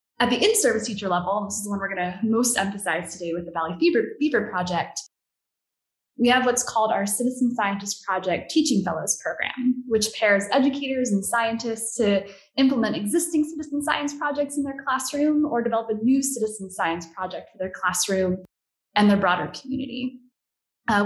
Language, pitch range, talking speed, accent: English, 200-260 Hz, 170 wpm, American